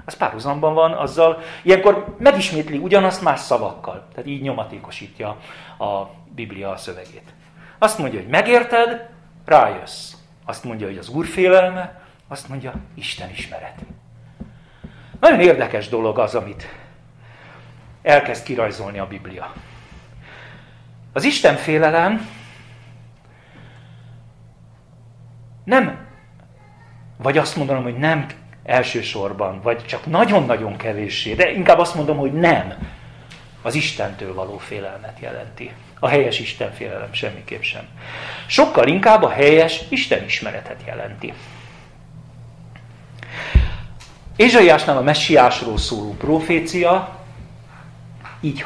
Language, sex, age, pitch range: Hungarian, male, 40-59, 115-165 Hz